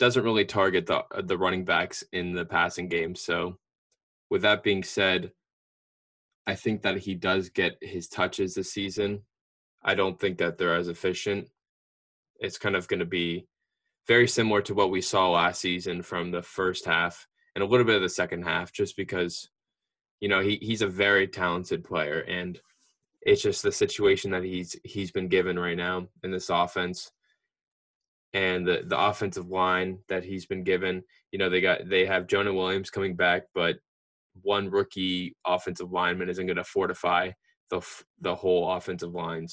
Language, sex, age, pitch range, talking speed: English, male, 20-39, 90-110 Hz, 175 wpm